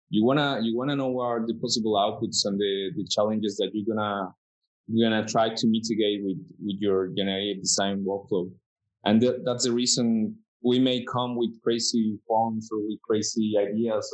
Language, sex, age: English, male, 20-39